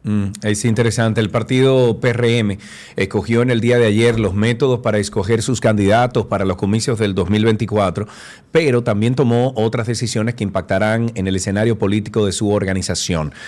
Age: 40-59